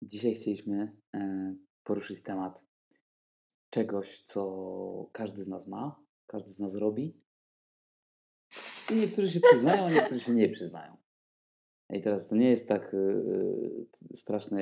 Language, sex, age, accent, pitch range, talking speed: Polish, male, 20-39, native, 95-110 Hz, 125 wpm